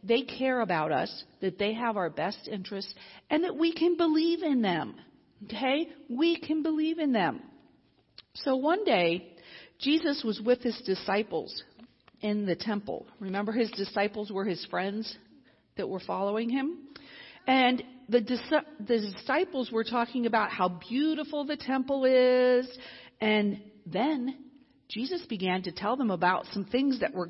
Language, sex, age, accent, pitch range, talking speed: English, female, 50-69, American, 210-290 Hz, 150 wpm